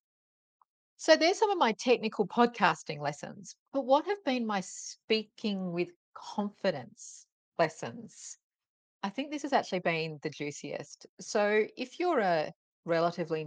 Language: English